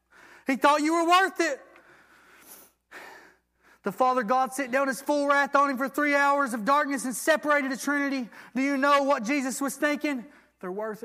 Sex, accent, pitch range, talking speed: male, American, 235-280 Hz, 185 wpm